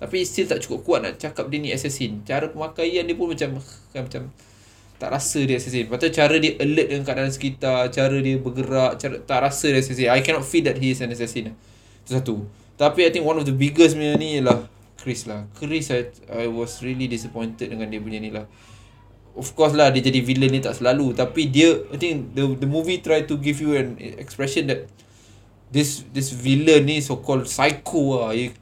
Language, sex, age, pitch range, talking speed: Malay, male, 20-39, 115-150 Hz, 210 wpm